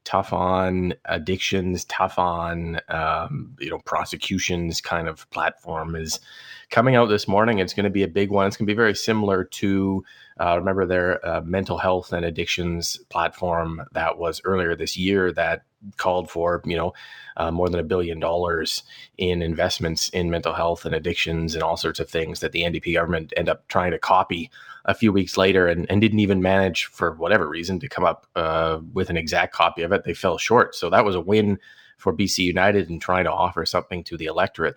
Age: 30-49